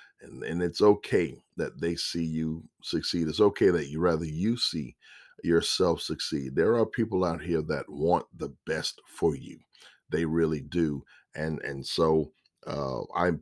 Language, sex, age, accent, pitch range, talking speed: English, male, 50-69, American, 80-95 Hz, 160 wpm